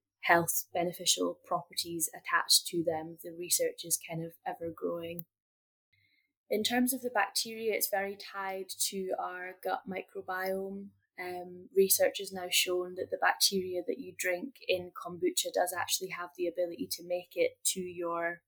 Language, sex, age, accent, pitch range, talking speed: English, female, 10-29, British, 170-190 Hz, 155 wpm